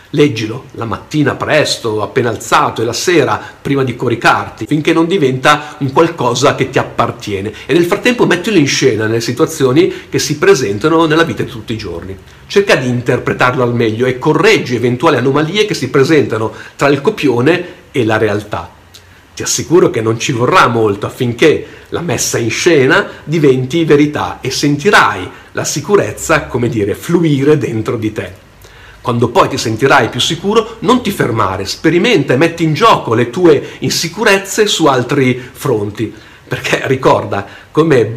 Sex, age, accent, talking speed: male, 50-69, native, 160 wpm